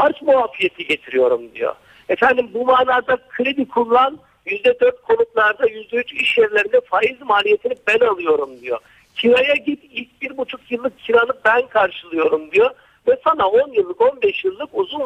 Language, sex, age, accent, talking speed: Turkish, male, 60-79, native, 155 wpm